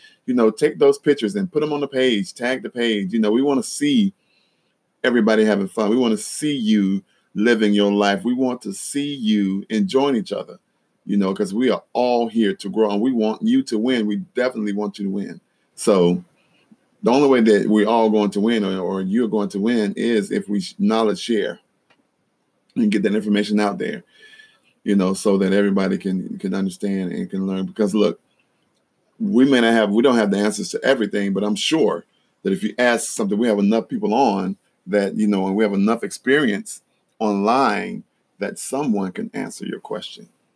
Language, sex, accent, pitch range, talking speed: English, male, American, 100-130 Hz, 205 wpm